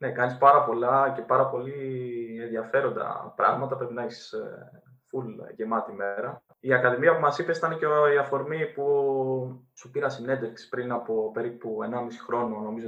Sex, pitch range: male, 130-180 Hz